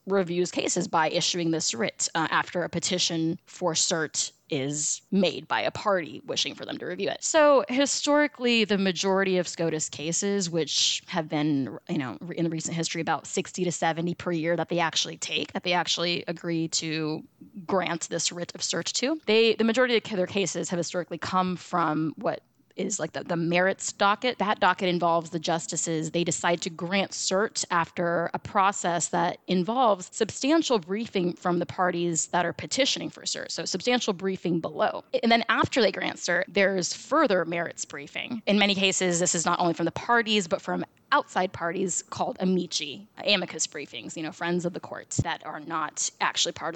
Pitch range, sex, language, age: 165-195 Hz, female, English, 20-39